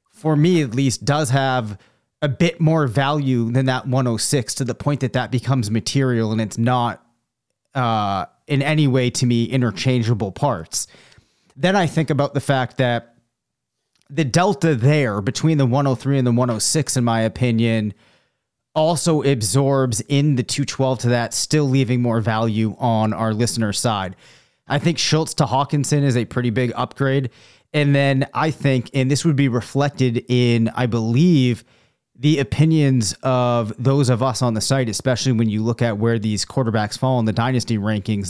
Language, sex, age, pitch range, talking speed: English, male, 30-49, 115-140 Hz, 170 wpm